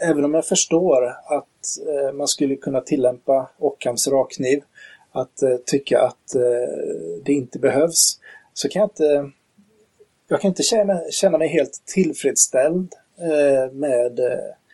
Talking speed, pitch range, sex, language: 140 wpm, 125-160 Hz, male, Swedish